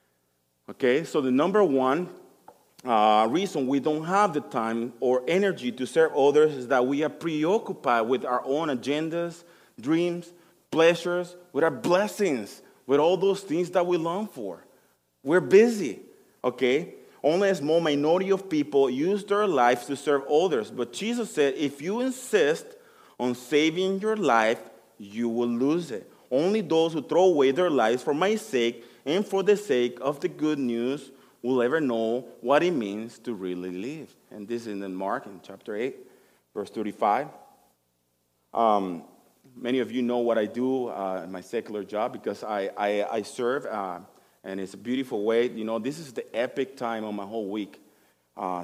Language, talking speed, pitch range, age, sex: English, 175 wpm, 110-170 Hz, 30-49, male